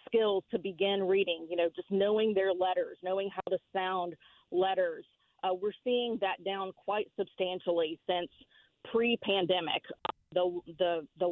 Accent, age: American, 40-59